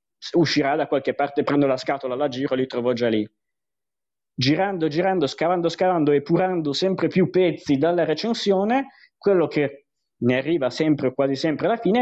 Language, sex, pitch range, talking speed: Italian, male, 130-170 Hz, 165 wpm